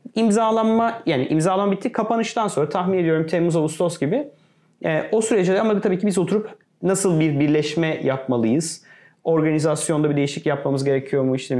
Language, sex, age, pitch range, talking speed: Turkish, male, 30-49, 145-190 Hz, 155 wpm